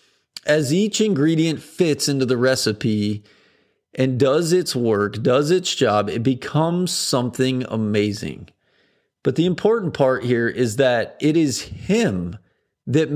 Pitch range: 125-160 Hz